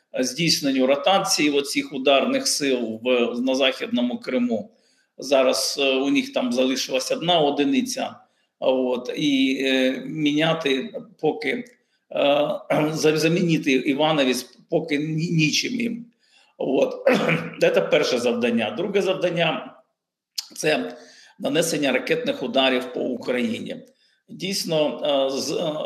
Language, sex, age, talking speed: Ukrainian, male, 50-69, 95 wpm